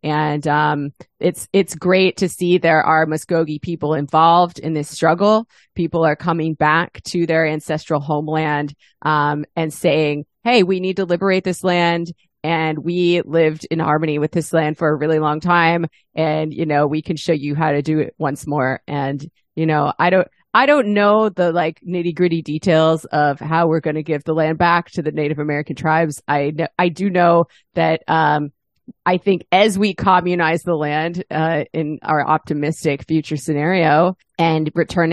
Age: 30-49